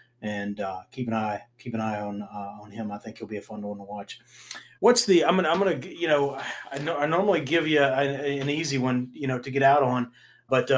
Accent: American